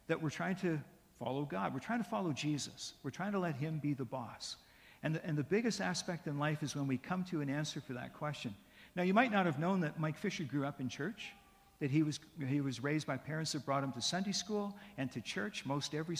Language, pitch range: English, 130-170 Hz